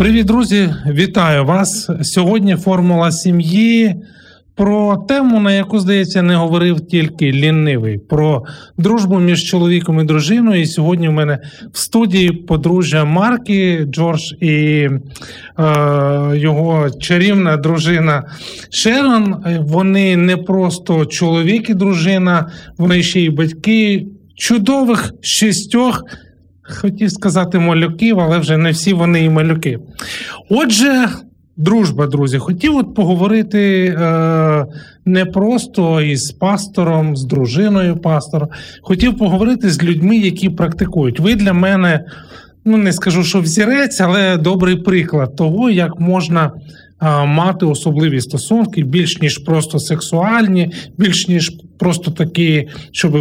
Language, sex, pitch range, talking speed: Ukrainian, male, 155-195 Hz, 120 wpm